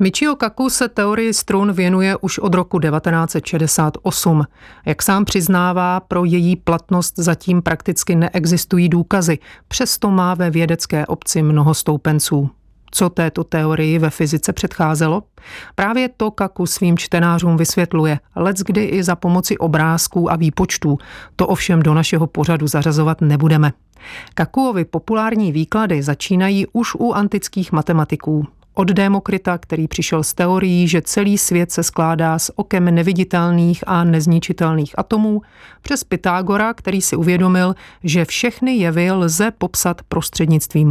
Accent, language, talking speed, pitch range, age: native, Czech, 130 wpm, 160-195 Hz, 40-59